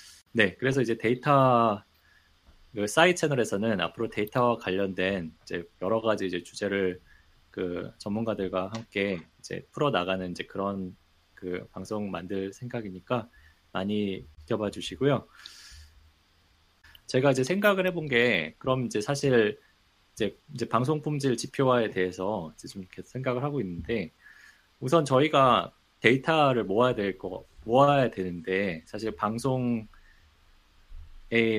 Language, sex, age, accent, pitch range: Korean, male, 20-39, native, 95-130 Hz